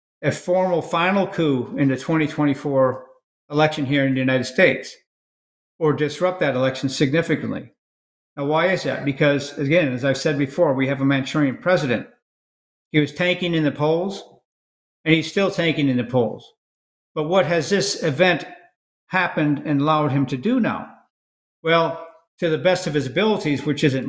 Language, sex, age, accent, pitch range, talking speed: English, male, 50-69, American, 140-175 Hz, 165 wpm